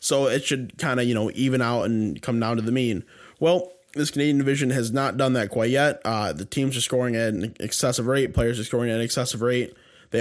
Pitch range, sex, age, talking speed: 110-135 Hz, male, 20-39, 245 wpm